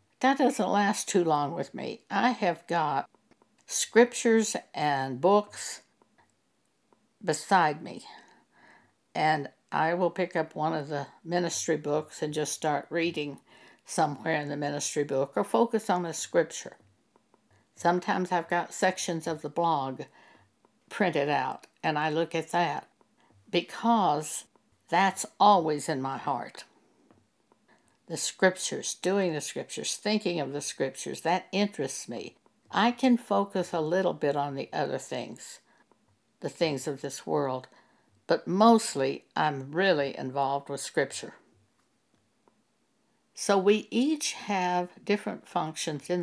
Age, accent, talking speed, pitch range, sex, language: 60-79, American, 130 wpm, 145-200 Hz, female, English